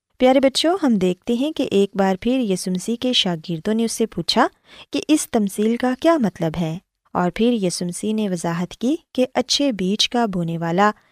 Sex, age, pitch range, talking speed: female, 20-39, 185-260 Hz, 190 wpm